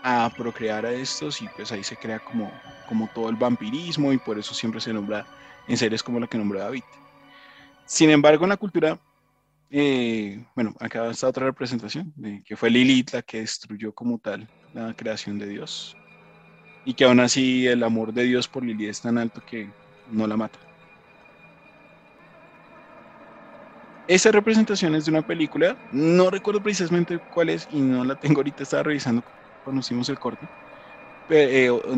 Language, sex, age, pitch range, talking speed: Spanish, male, 20-39, 115-145 Hz, 170 wpm